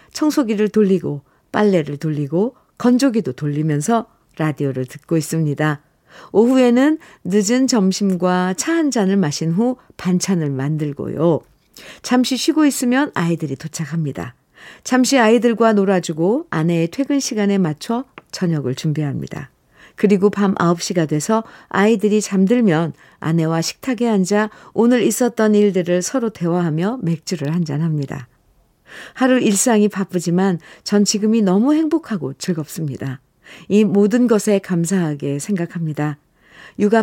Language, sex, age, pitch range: Korean, female, 50-69, 160-220 Hz